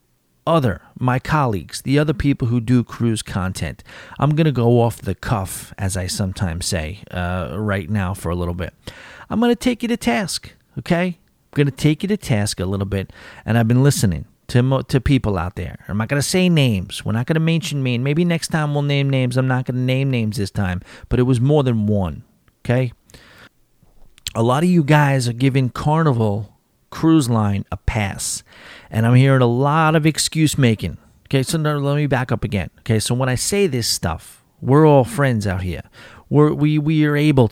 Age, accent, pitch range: 40-59, American, 100-140 Hz